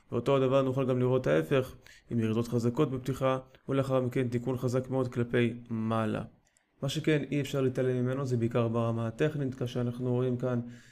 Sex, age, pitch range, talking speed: male, 20-39, 120-130 Hz, 170 wpm